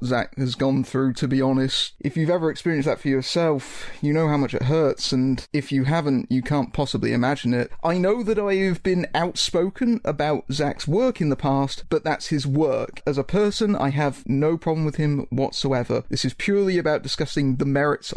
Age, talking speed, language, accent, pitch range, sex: 30-49, 210 wpm, English, British, 135-175 Hz, male